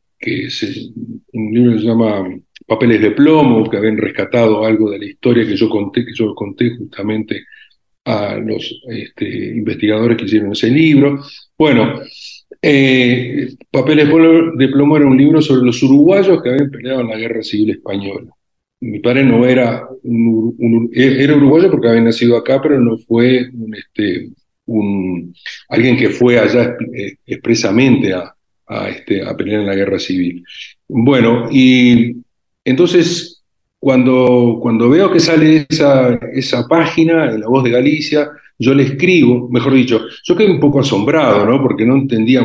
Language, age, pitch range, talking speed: Spanish, 50-69, 115-140 Hz, 165 wpm